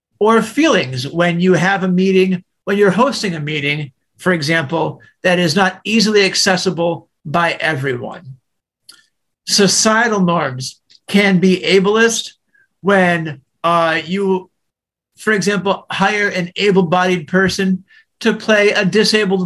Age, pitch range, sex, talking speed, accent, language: 50-69, 170-210 Hz, male, 120 wpm, American, English